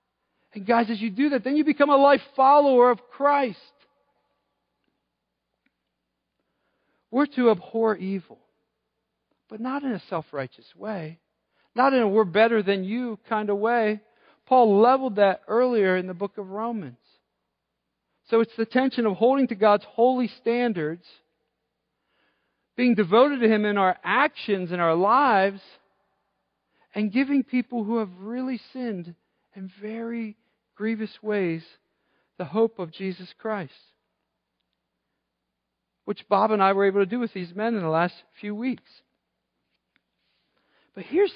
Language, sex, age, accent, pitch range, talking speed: English, male, 50-69, American, 170-240 Hz, 140 wpm